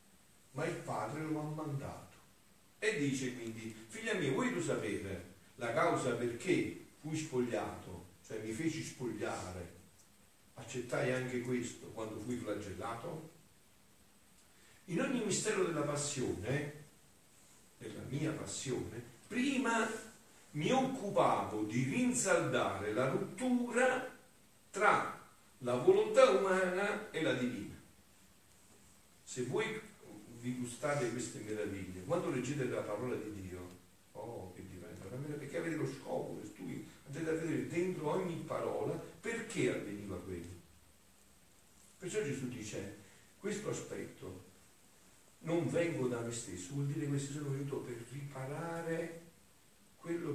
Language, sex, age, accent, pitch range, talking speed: Italian, male, 50-69, native, 105-155 Hz, 120 wpm